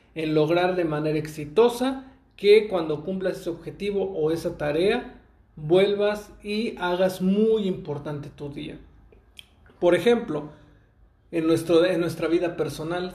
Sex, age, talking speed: male, 40-59, 125 wpm